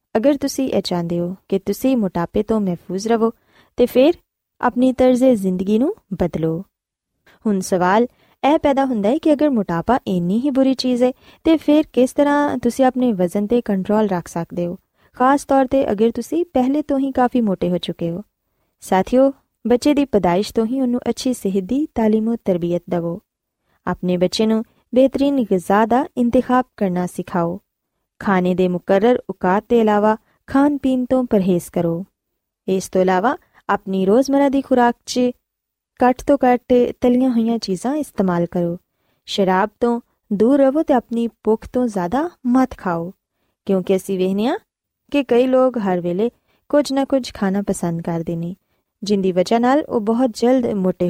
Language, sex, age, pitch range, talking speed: Punjabi, female, 20-39, 185-255 Hz, 160 wpm